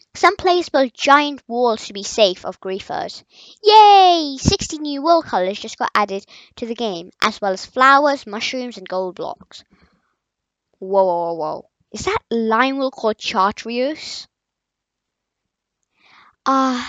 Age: 10-29